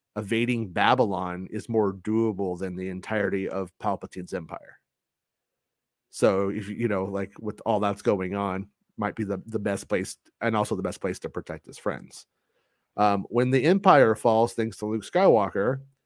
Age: 30-49